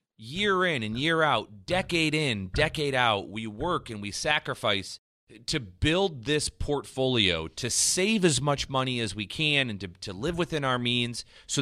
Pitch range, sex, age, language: 105-155 Hz, male, 30-49, English